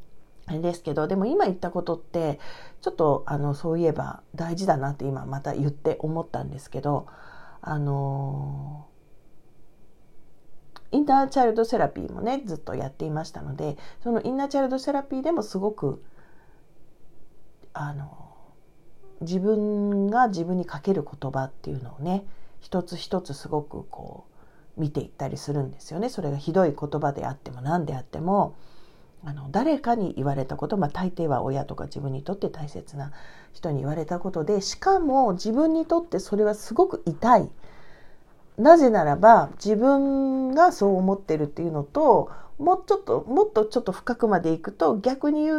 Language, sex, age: Japanese, female, 40-59